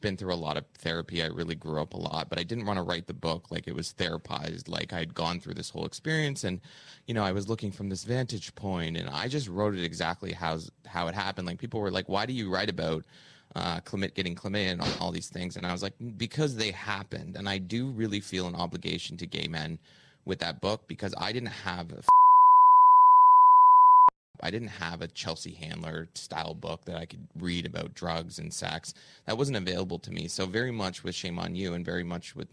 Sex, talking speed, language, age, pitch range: male, 235 wpm, English, 20-39, 85-110 Hz